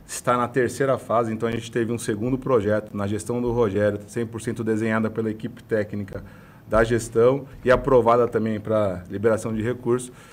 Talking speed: 170 wpm